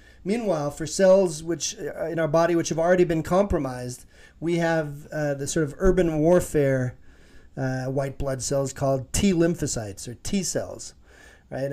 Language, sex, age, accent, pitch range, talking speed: English, male, 40-59, American, 135-170 Hz, 150 wpm